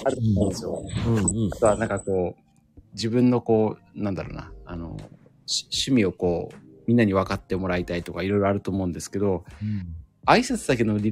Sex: male